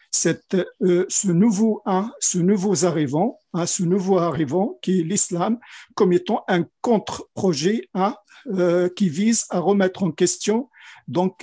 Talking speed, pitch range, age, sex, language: 120 wpm, 175-210 Hz, 50-69, male, French